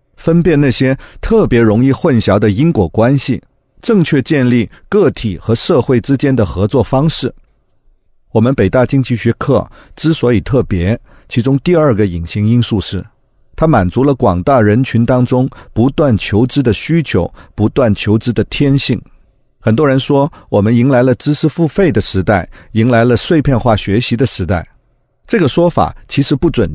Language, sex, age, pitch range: Chinese, male, 50-69, 110-150 Hz